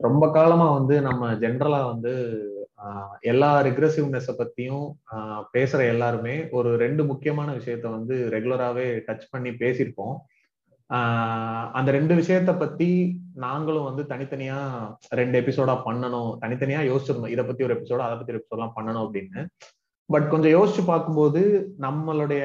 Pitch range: 120-160 Hz